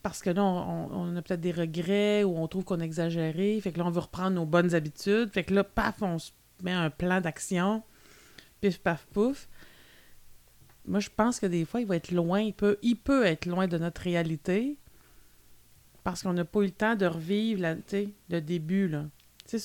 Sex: female